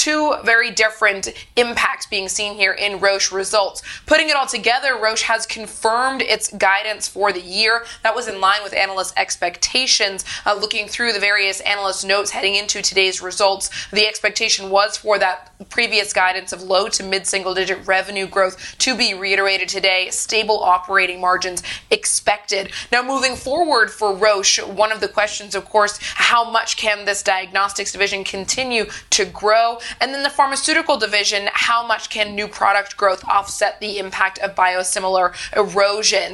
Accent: American